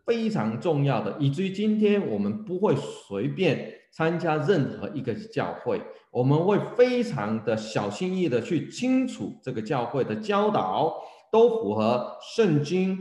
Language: Chinese